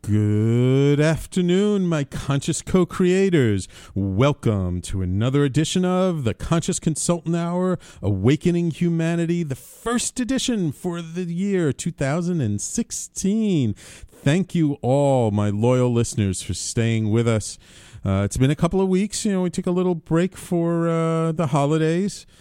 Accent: American